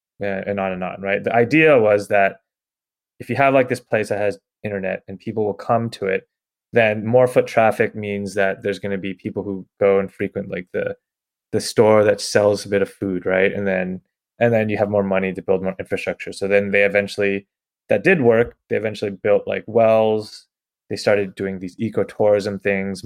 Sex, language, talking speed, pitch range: male, English, 210 wpm, 100-120 Hz